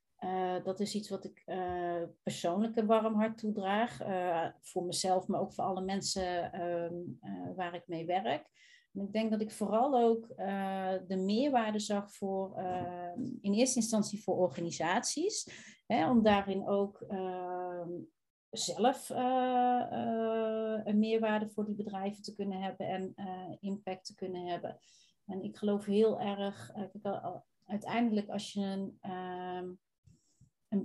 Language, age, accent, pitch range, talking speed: Dutch, 40-59, Dutch, 185-220 Hz, 150 wpm